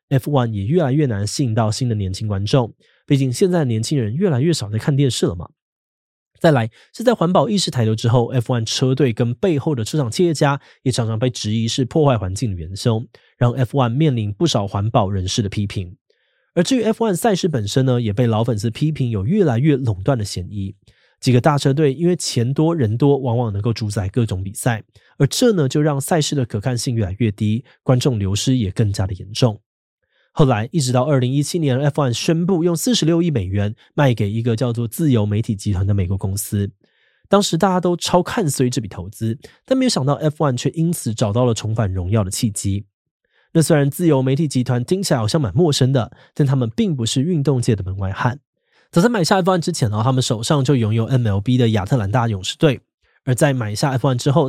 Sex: male